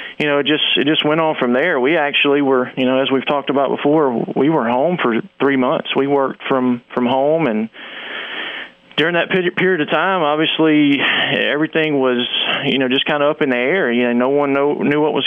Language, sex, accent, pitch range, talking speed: English, male, American, 130-155 Hz, 225 wpm